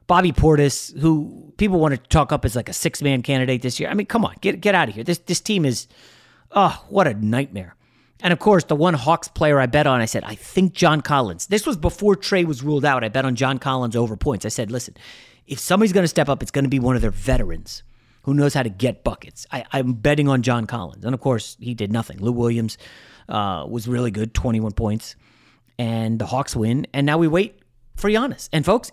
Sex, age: male, 30-49